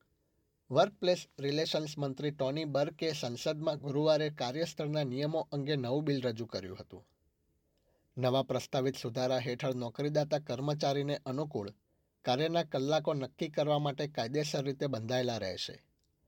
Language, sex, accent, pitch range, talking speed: Gujarati, male, native, 125-155 Hz, 105 wpm